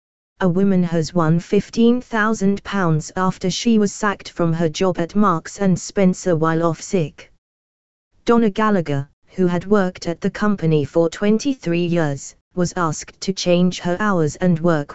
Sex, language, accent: female, English, British